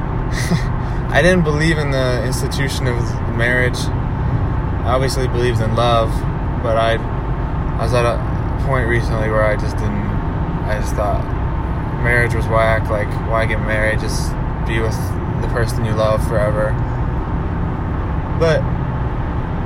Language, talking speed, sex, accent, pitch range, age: English, 135 wpm, male, American, 110-130 Hz, 20-39